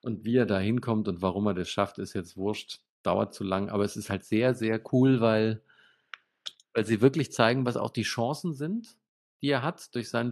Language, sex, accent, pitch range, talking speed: German, male, German, 110-145 Hz, 220 wpm